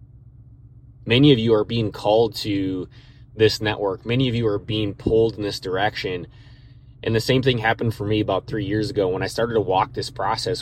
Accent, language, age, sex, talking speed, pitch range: American, English, 20-39, male, 205 wpm, 110-125 Hz